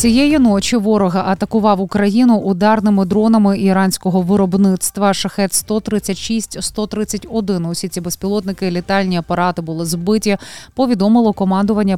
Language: Ukrainian